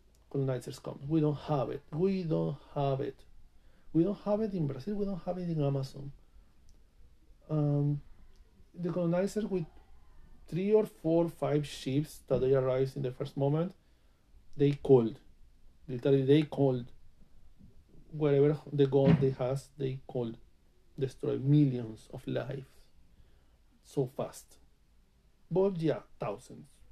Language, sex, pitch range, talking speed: English, male, 100-155 Hz, 130 wpm